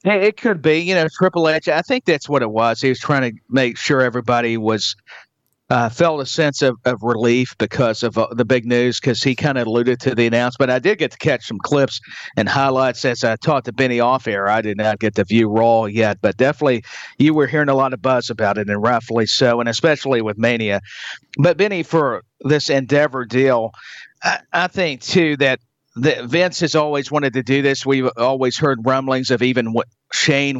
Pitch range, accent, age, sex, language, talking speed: 120-145 Hz, American, 50-69, male, English, 215 wpm